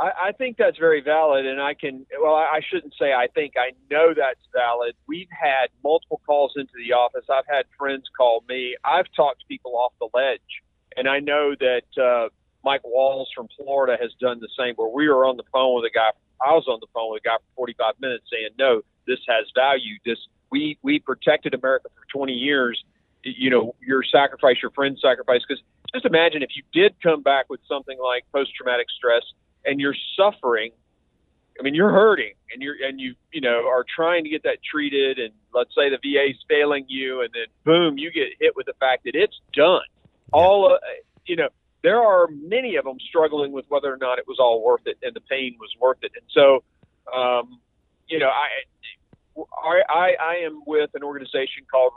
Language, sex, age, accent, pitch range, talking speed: English, male, 40-59, American, 125-170 Hz, 210 wpm